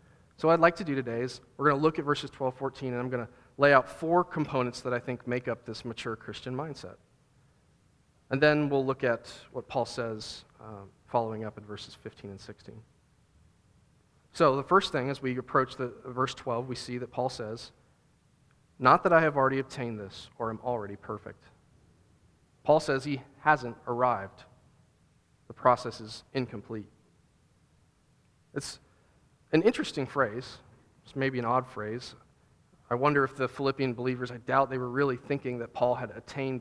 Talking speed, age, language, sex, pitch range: 175 wpm, 40-59, English, male, 115-135 Hz